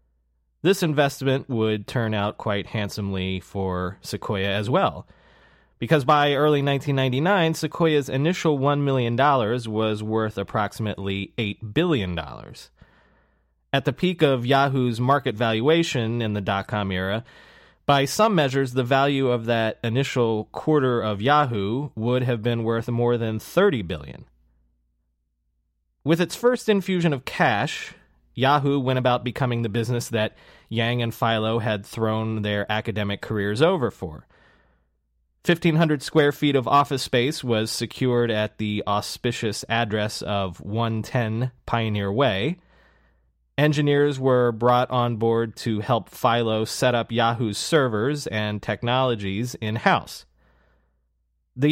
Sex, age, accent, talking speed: male, 30-49, American, 125 wpm